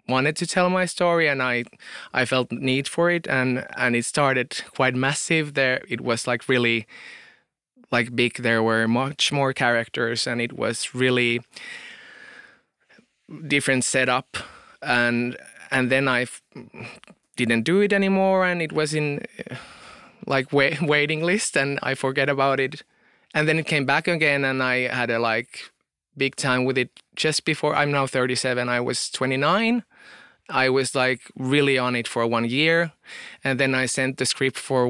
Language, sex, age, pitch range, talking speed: English, male, 20-39, 120-140 Hz, 170 wpm